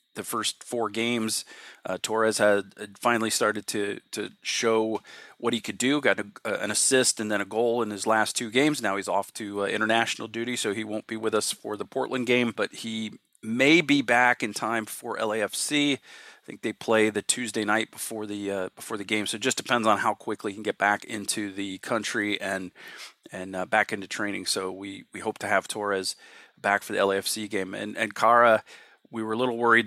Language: English